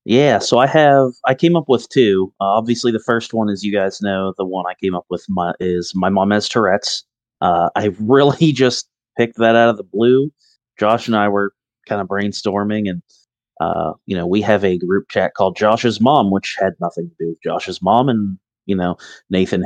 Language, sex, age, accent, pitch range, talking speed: English, male, 30-49, American, 95-115 Hz, 215 wpm